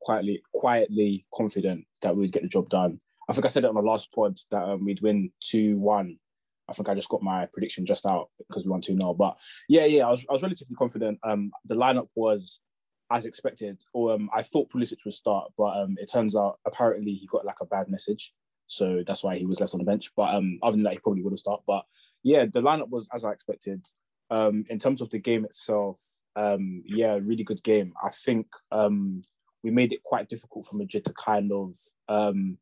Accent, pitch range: British, 100-110 Hz